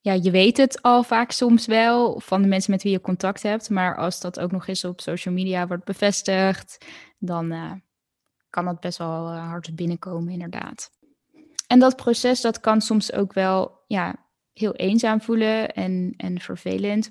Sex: female